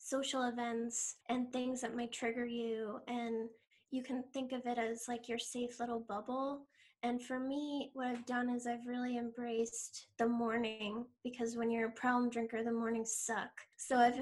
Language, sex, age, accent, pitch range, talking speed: English, female, 10-29, American, 230-250 Hz, 180 wpm